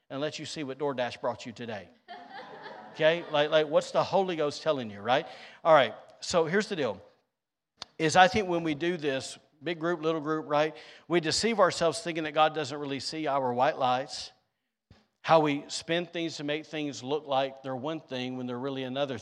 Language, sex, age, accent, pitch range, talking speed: English, male, 50-69, American, 125-155 Hz, 205 wpm